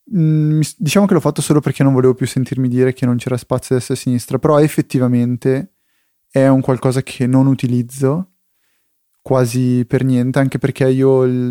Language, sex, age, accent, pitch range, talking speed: Italian, male, 20-39, native, 125-140 Hz, 175 wpm